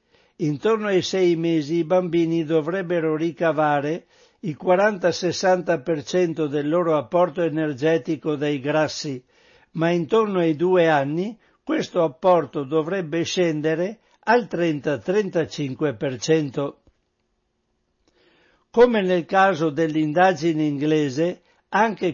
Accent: native